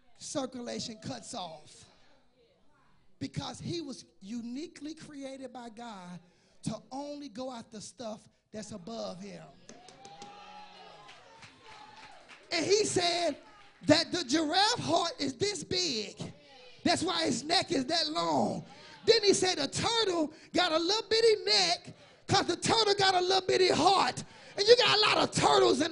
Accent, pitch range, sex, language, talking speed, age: American, 250-390 Hz, male, English, 145 wpm, 30-49